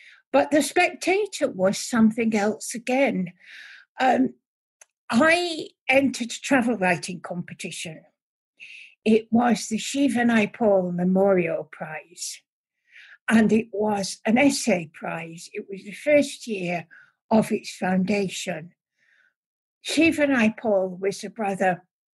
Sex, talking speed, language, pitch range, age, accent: female, 110 wpm, English, 185-265 Hz, 60-79, British